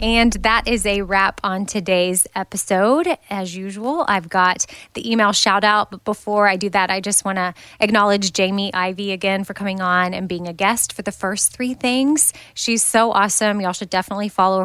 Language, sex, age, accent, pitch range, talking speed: English, female, 20-39, American, 190-230 Hz, 195 wpm